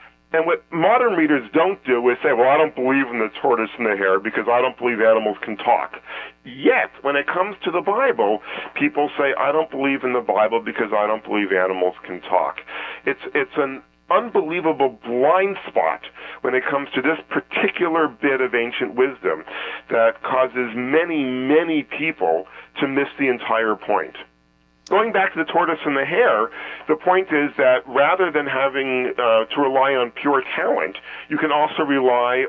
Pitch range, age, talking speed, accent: 105-140 Hz, 40-59, 180 wpm, American